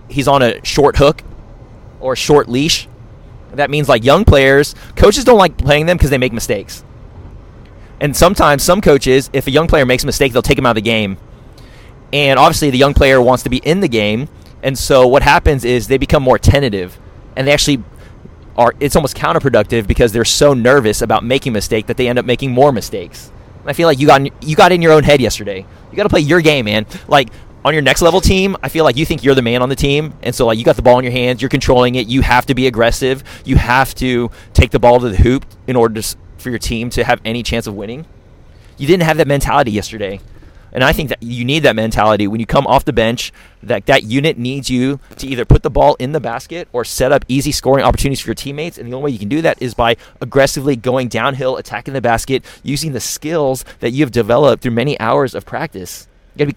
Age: 30-49